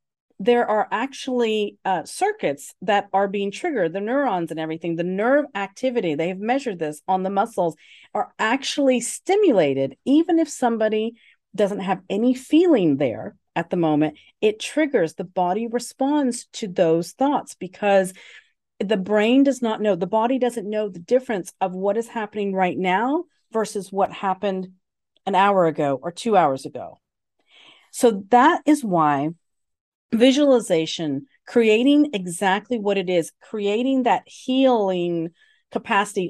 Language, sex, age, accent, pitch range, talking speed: English, female, 40-59, American, 180-240 Hz, 140 wpm